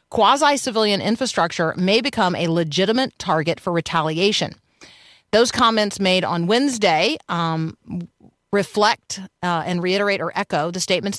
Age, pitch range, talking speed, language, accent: 40-59, 170-220 Hz, 125 wpm, English, American